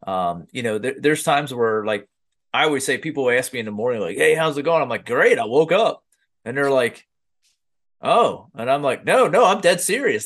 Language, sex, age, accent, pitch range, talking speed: English, male, 30-49, American, 105-155 Hz, 230 wpm